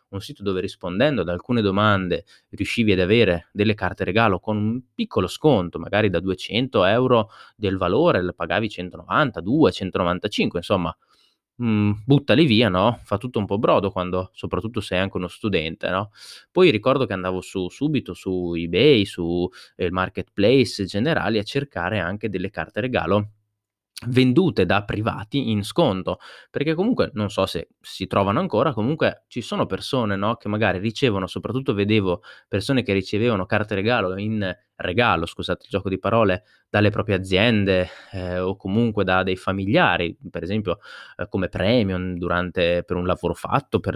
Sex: male